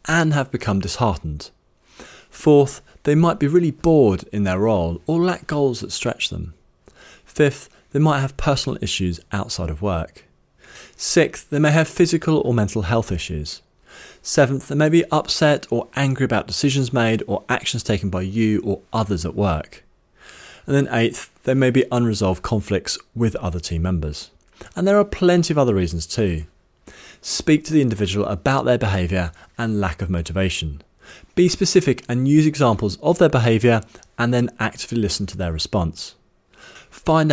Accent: British